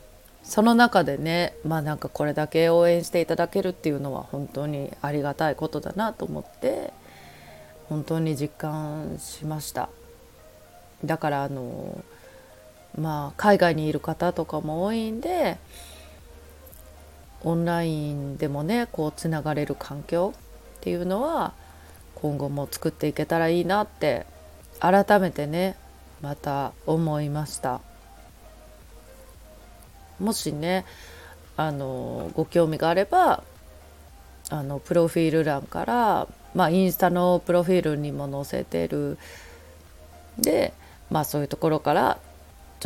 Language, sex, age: Japanese, female, 30-49